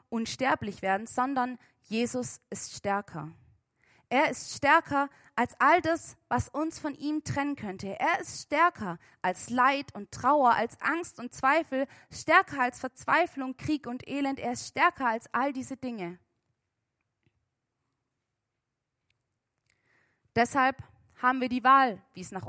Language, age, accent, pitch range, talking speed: German, 20-39, German, 155-255 Hz, 135 wpm